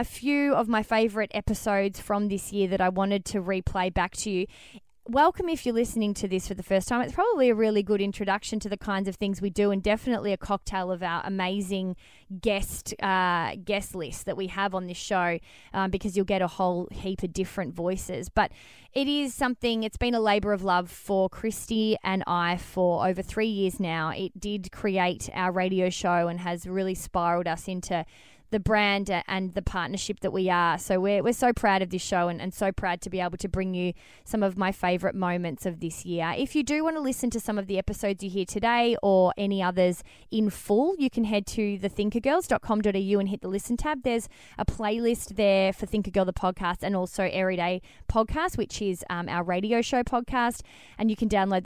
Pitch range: 185-215 Hz